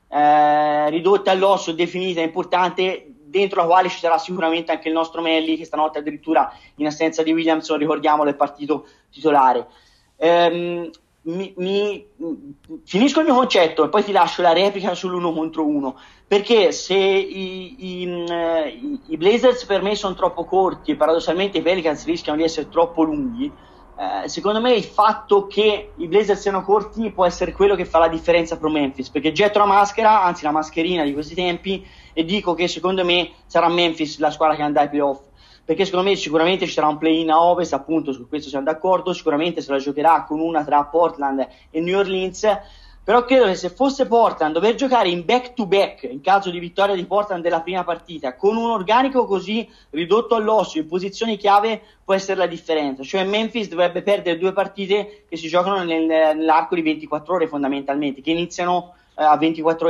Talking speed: 180 wpm